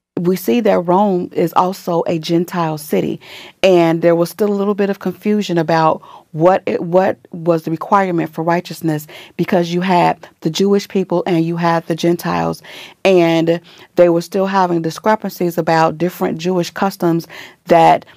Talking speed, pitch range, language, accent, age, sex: 160 wpm, 165-195 Hz, English, American, 40-59, female